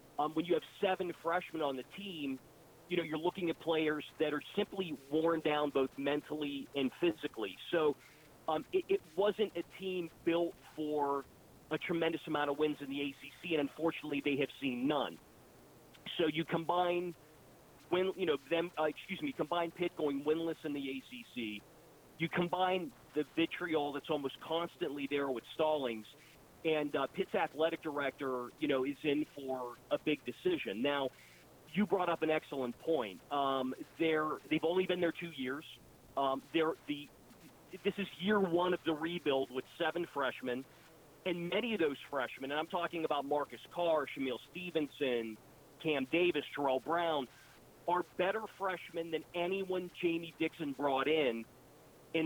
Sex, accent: male, American